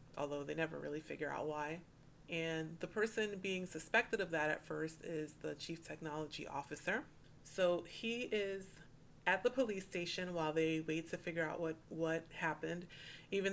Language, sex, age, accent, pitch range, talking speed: English, female, 30-49, American, 155-190 Hz, 170 wpm